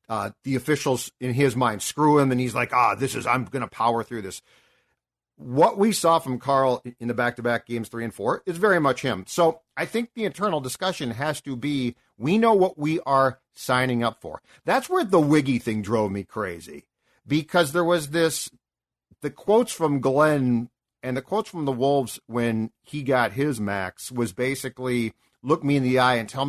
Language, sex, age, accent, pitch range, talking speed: English, male, 50-69, American, 120-160 Hz, 200 wpm